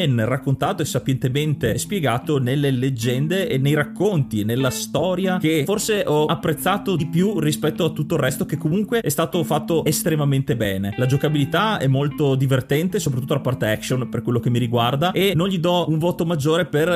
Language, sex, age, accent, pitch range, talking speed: Italian, male, 30-49, native, 130-165 Hz, 180 wpm